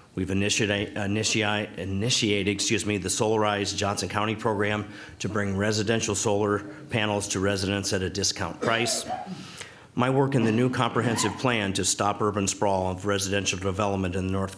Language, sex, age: English, male, 50-69